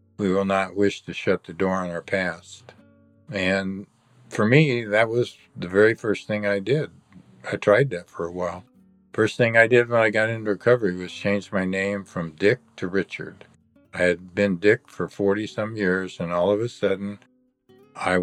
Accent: American